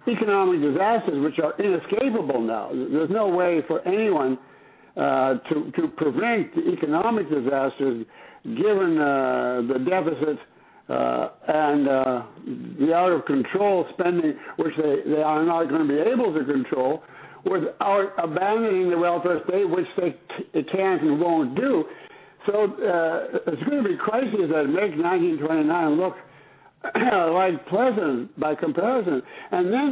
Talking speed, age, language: 140 wpm, 60-79, English